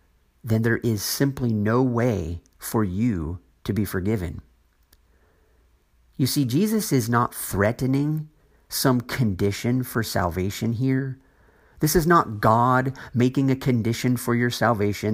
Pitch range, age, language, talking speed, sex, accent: 90-125 Hz, 50-69, English, 125 wpm, male, American